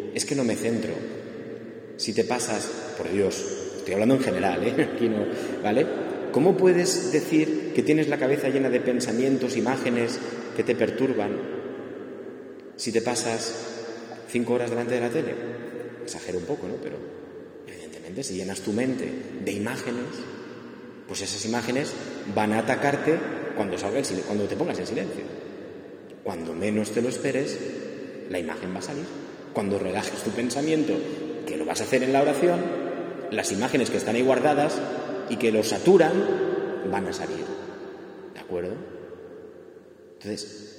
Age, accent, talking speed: 30-49, Spanish, 155 wpm